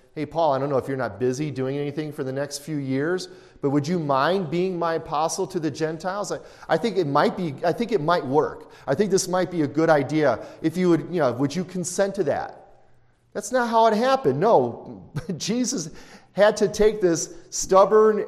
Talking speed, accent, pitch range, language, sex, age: 220 wpm, American, 120-175 Hz, English, male, 40-59